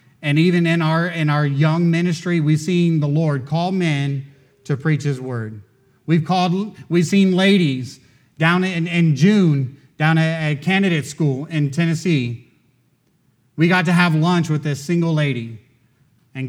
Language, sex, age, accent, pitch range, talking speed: English, male, 30-49, American, 135-180 Hz, 155 wpm